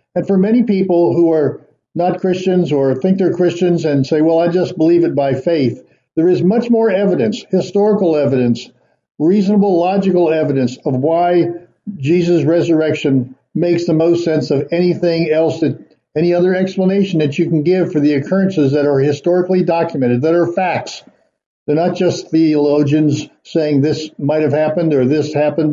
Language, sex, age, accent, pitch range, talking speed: English, male, 60-79, American, 150-180 Hz, 170 wpm